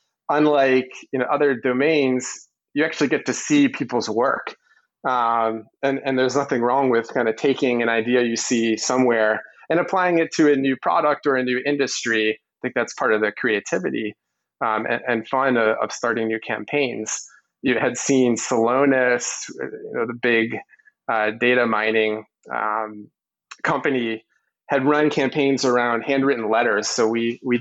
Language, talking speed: English, 165 wpm